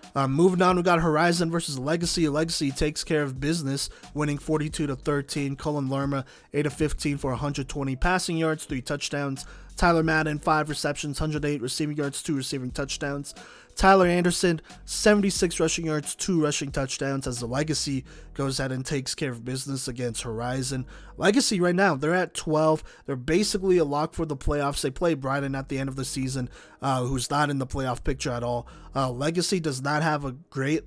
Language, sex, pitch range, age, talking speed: English, male, 130-160 Hz, 30-49, 185 wpm